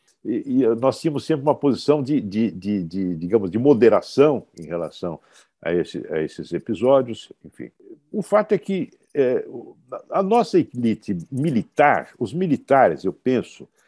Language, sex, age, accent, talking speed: Portuguese, male, 60-79, Brazilian, 145 wpm